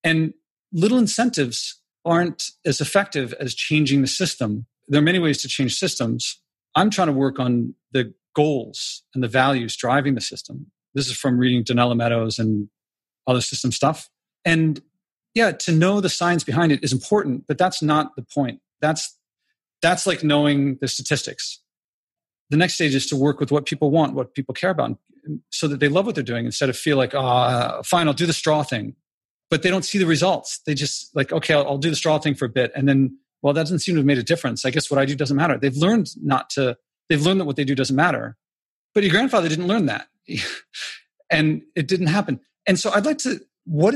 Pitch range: 135-175 Hz